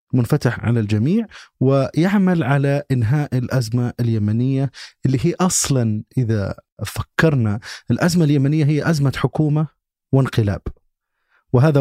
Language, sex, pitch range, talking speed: Arabic, male, 110-140 Hz, 100 wpm